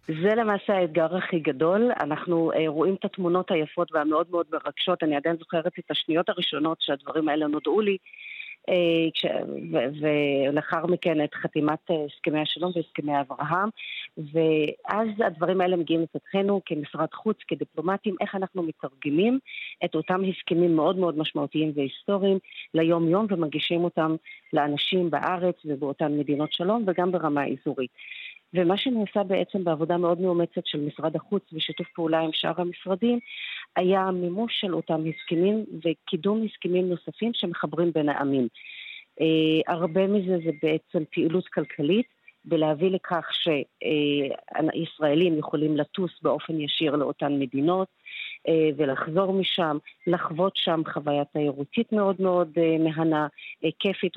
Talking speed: 125 wpm